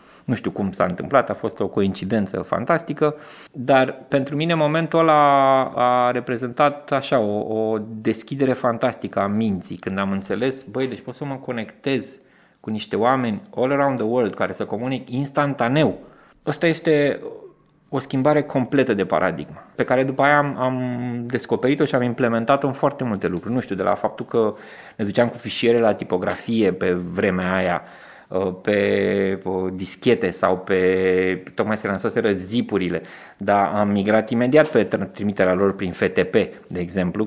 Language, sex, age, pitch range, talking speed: Romanian, male, 20-39, 100-135 Hz, 160 wpm